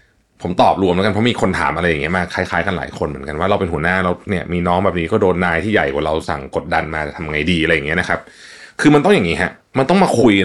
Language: Thai